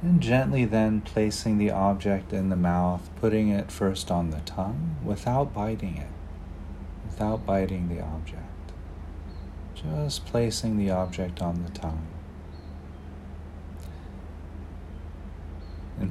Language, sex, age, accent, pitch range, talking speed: English, male, 40-59, American, 80-95 Hz, 110 wpm